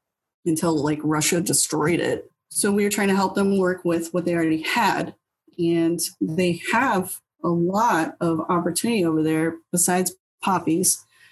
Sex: female